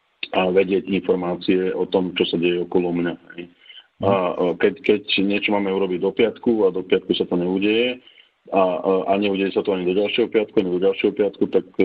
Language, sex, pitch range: Slovak, male, 90-100 Hz